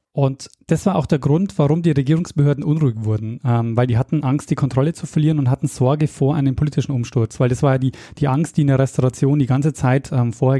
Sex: male